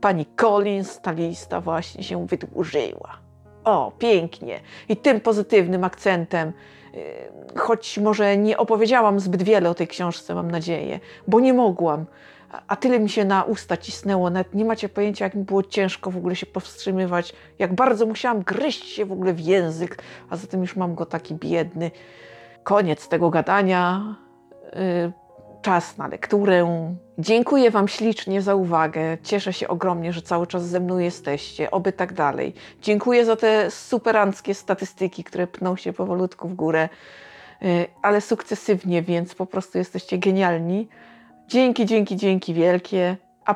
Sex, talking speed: female, 150 wpm